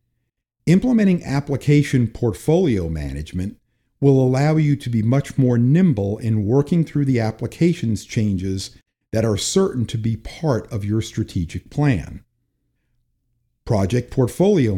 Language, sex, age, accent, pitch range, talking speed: English, male, 50-69, American, 110-145 Hz, 120 wpm